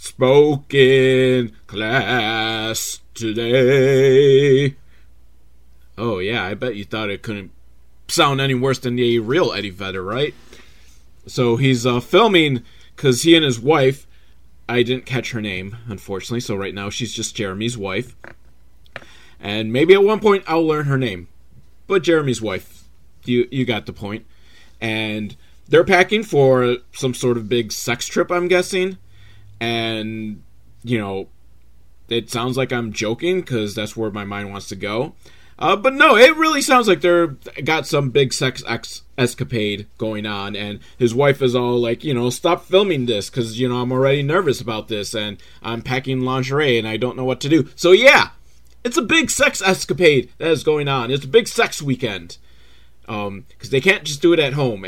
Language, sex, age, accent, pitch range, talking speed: English, male, 30-49, American, 105-135 Hz, 170 wpm